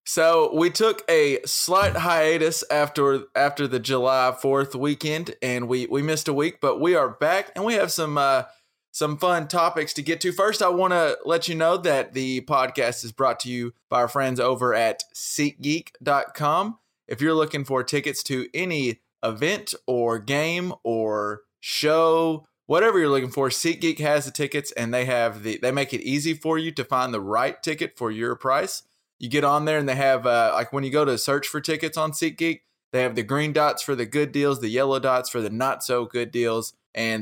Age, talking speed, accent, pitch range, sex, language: 20-39, 205 wpm, American, 125-160 Hz, male, English